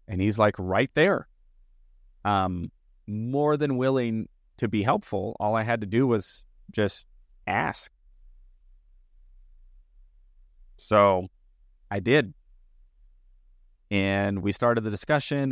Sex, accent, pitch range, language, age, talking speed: male, American, 75-105 Hz, English, 30-49, 110 wpm